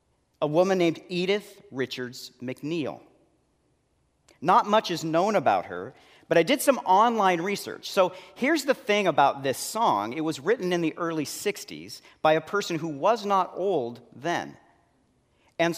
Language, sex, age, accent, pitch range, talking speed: English, male, 40-59, American, 135-195 Hz, 155 wpm